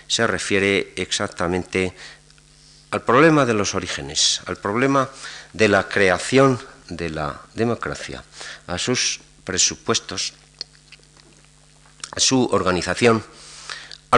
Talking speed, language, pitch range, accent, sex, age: 105 wpm, Spanish, 100-145 Hz, Spanish, male, 50-69